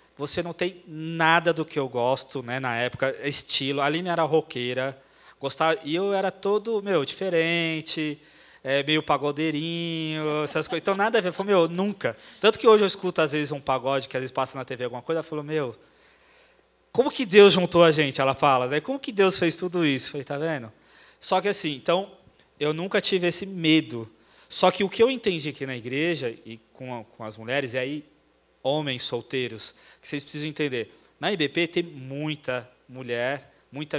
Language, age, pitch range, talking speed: Portuguese, 20-39, 130-175 Hz, 195 wpm